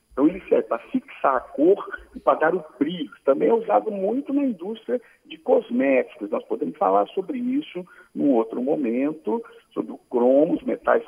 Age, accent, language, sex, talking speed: 50-69, Brazilian, Portuguese, male, 180 wpm